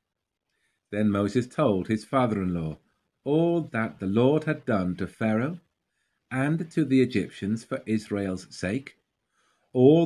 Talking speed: 125 wpm